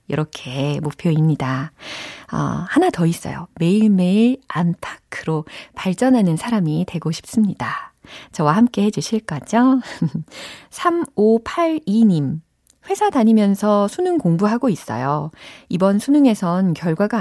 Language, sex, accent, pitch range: Korean, female, native, 160-230 Hz